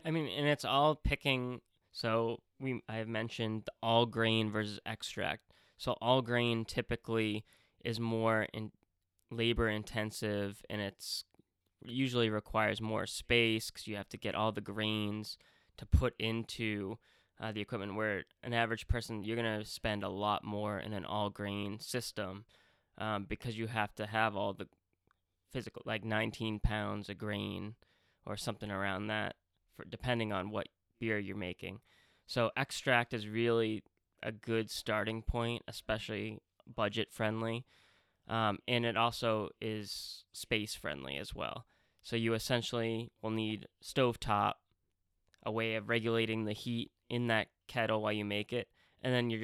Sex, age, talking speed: male, 10-29, 155 wpm